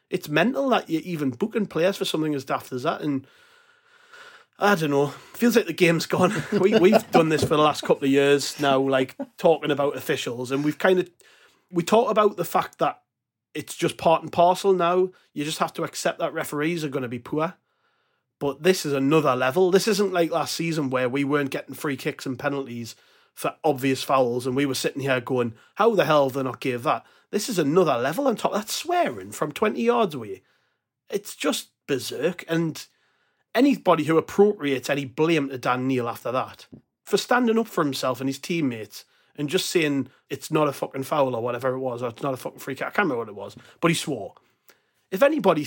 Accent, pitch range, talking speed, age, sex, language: British, 135-185 Hz, 215 wpm, 30-49, male, English